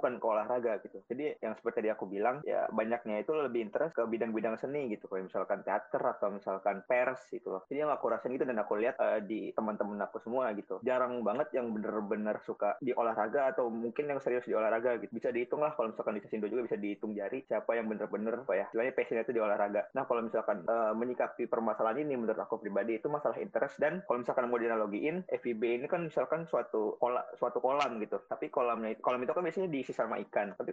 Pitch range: 110-130 Hz